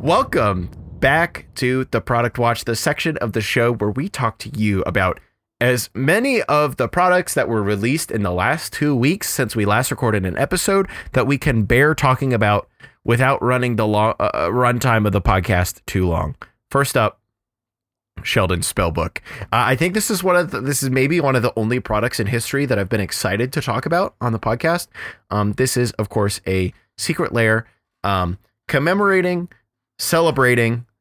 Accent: American